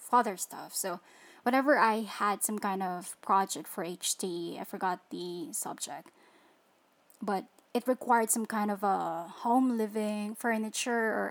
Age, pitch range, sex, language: 20-39, 205-250 Hz, female, English